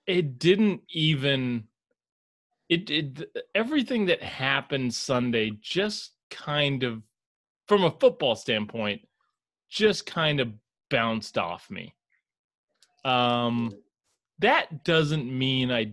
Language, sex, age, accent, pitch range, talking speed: English, male, 30-49, American, 120-175 Hz, 100 wpm